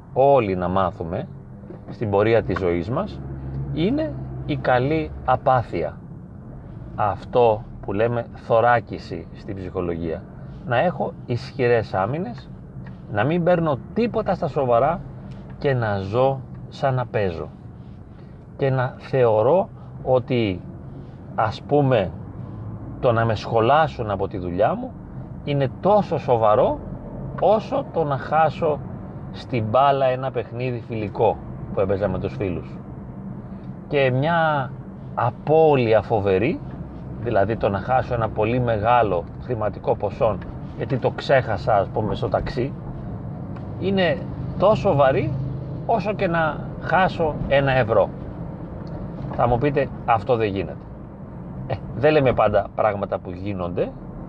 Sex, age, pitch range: male, 30-49, 100-145 Hz